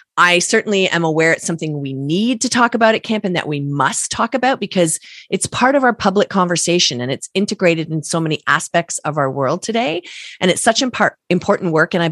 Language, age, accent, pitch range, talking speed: English, 30-49, American, 155-220 Hz, 220 wpm